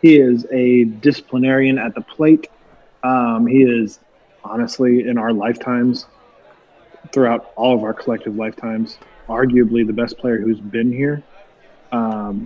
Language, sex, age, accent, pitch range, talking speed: English, male, 20-39, American, 110-125 Hz, 135 wpm